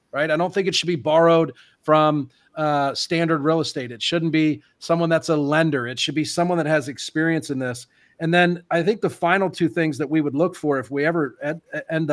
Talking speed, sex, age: 235 wpm, male, 40-59